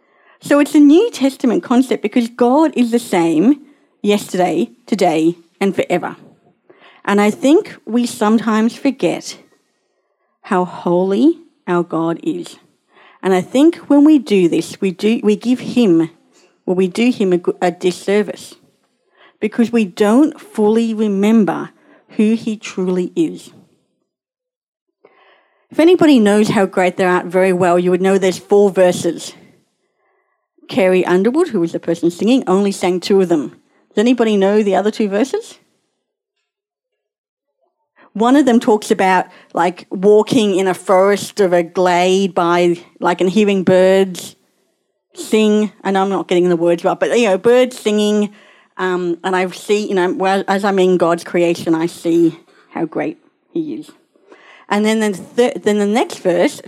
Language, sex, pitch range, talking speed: English, female, 185-250 Hz, 155 wpm